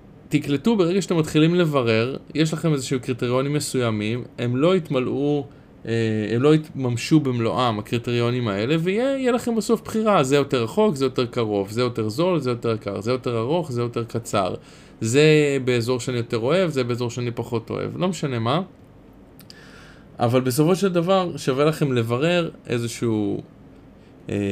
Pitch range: 115-150 Hz